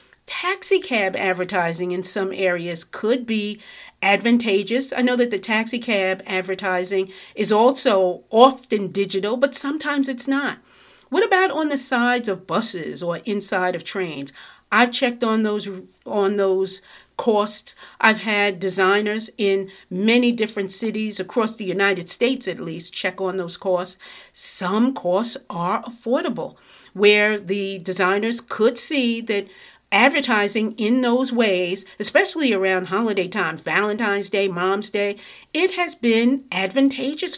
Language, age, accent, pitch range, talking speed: English, 50-69, American, 190-240 Hz, 135 wpm